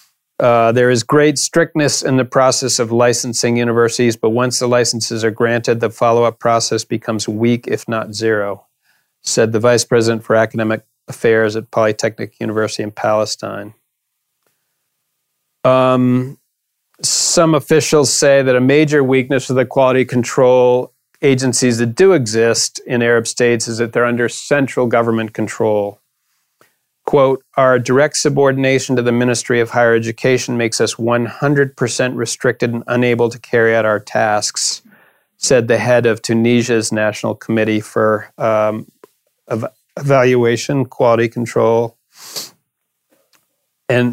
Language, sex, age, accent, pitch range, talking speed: English, male, 40-59, American, 115-130 Hz, 135 wpm